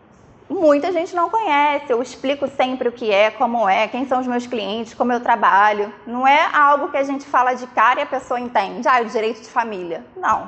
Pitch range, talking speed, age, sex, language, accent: 210-265 Hz, 230 wpm, 20-39, female, Portuguese, Brazilian